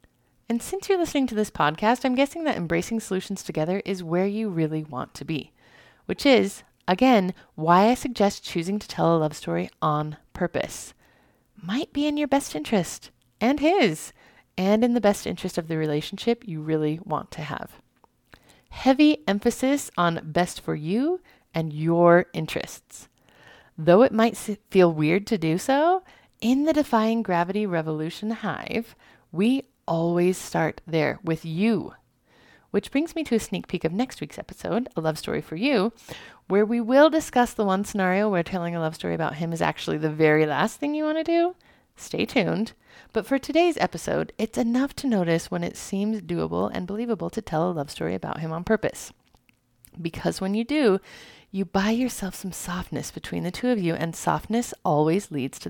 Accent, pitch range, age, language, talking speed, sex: American, 165-240 Hz, 30-49, English, 180 wpm, female